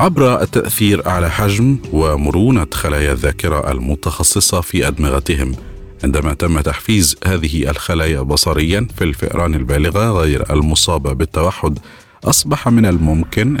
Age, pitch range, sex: 50-69, 80-105 Hz, male